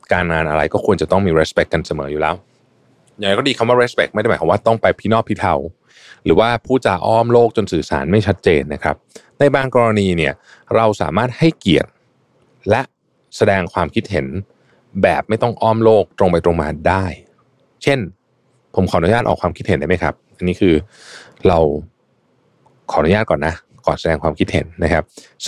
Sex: male